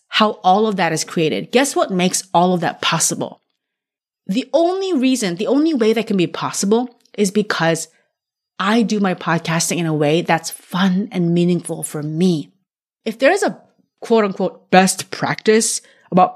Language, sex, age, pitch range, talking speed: English, female, 30-49, 175-230 Hz, 170 wpm